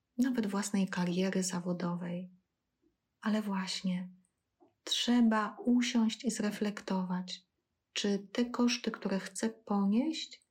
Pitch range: 190-225 Hz